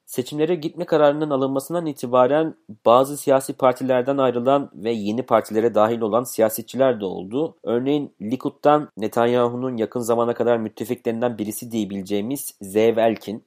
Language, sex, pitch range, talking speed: Turkish, male, 115-150 Hz, 120 wpm